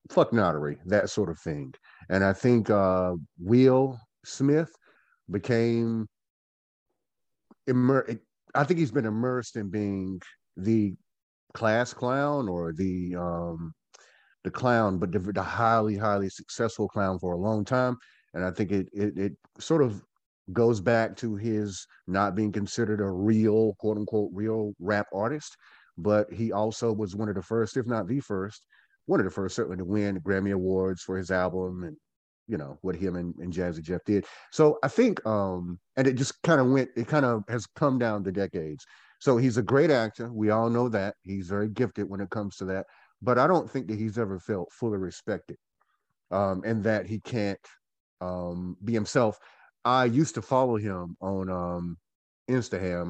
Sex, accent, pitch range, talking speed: male, American, 95-115 Hz, 175 wpm